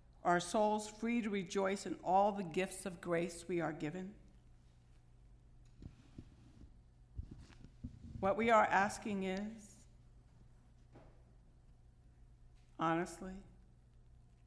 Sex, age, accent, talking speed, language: female, 60-79, American, 85 wpm, English